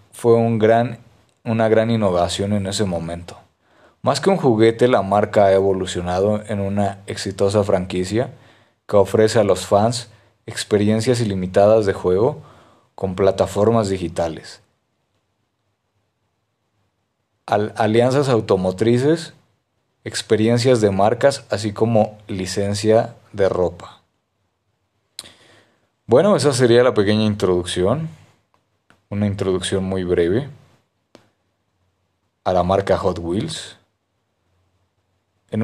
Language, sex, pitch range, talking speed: Spanish, male, 95-115 Hz, 95 wpm